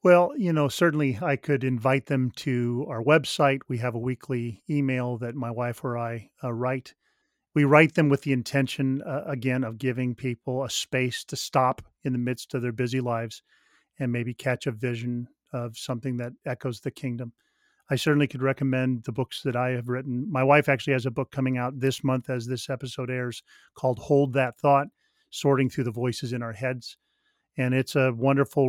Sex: male